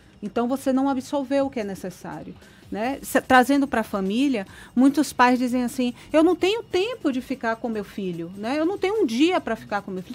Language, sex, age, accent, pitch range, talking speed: Portuguese, female, 30-49, Brazilian, 210-290 Hz, 225 wpm